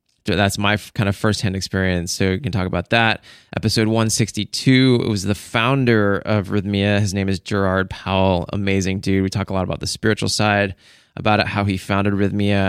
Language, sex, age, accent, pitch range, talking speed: English, male, 20-39, American, 90-105 Hz, 200 wpm